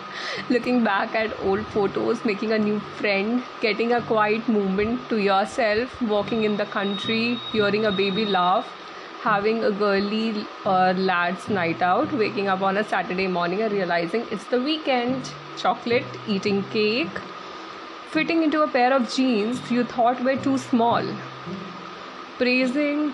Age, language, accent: 30-49, Hindi, native